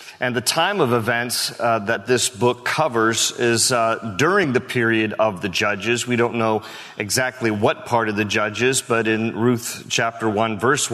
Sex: male